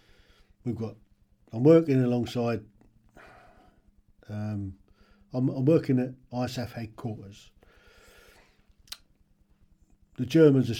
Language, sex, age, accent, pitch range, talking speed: English, male, 50-69, British, 100-120 Hz, 85 wpm